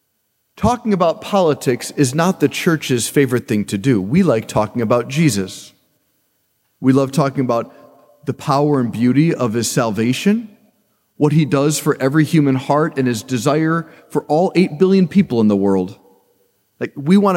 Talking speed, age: 165 wpm, 40-59